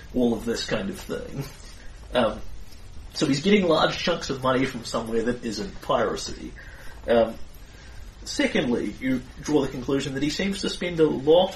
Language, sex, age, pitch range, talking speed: English, male, 30-49, 115-150 Hz, 165 wpm